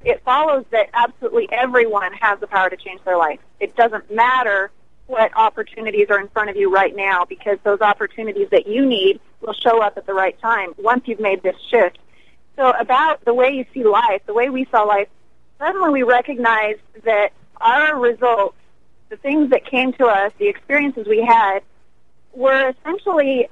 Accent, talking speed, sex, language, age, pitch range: American, 185 wpm, female, English, 30-49, 215-270 Hz